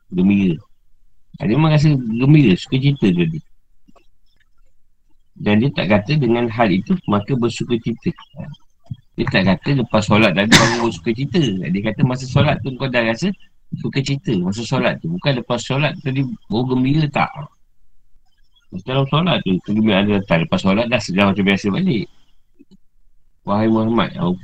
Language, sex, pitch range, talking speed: Malay, male, 95-140 Hz, 155 wpm